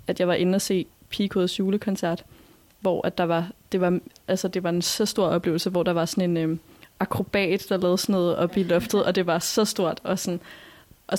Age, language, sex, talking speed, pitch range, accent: 20-39, Danish, female, 230 wpm, 175-205 Hz, native